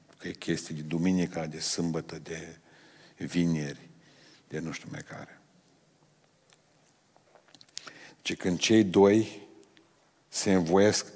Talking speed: 110 wpm